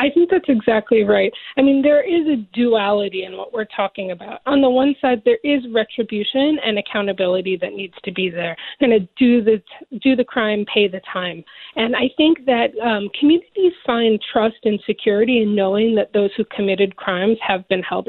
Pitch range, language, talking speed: 195-235 Hz, English, 205 wpm